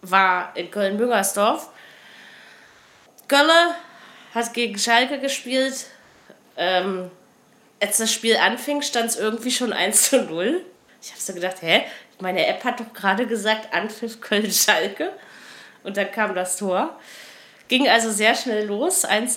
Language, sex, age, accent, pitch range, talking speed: German, female, 30-49, German, 205-245 Hz, 135 wpm